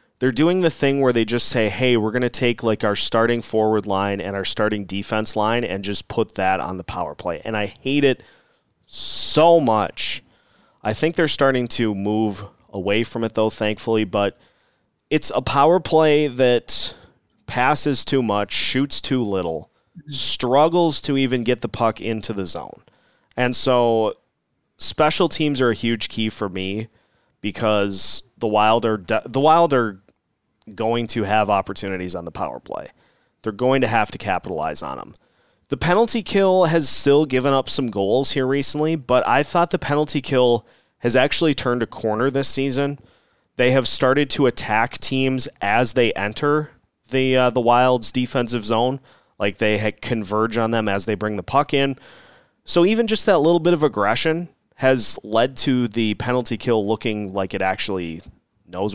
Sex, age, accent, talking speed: male, 30-49, American, 175 wpm